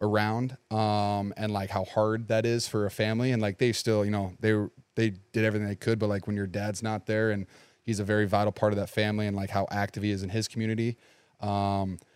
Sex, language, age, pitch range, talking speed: male, English, 30-49, 100-110 Hz, 240 wpm